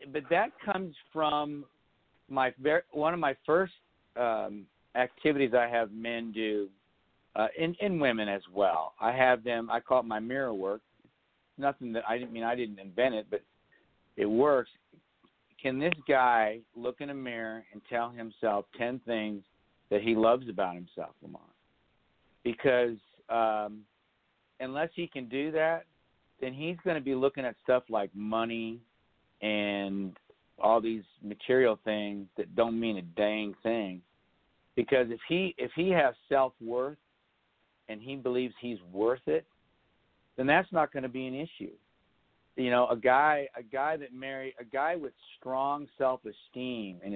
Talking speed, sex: 160 wpm, male